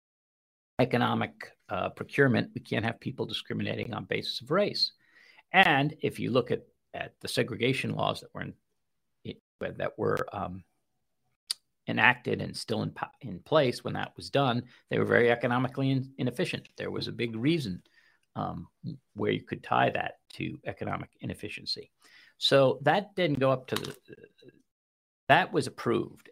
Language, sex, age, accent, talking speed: English, male, 50-69, American, 155 wpm